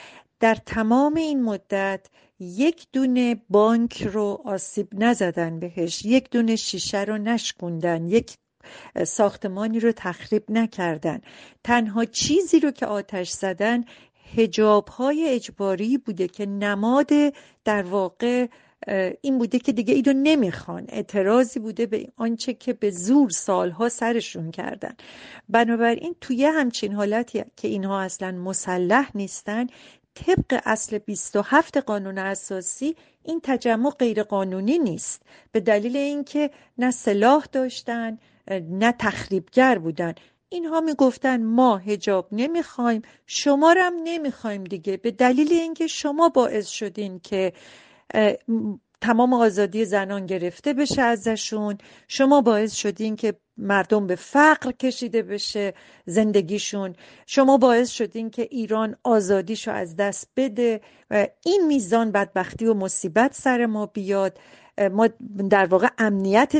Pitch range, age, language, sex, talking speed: 200-255 Hz, 40-59, Persian, female, 120 wpm